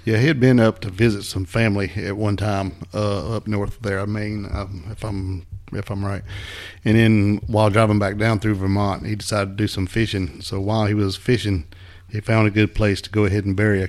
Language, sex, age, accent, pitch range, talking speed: English, male, 50-69, American, 95-105 Hz, 235 wpm